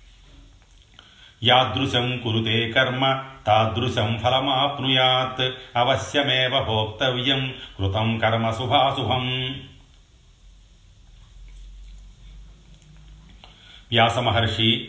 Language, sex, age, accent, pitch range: Telugu, male, 40-59, native, 105-130 Hz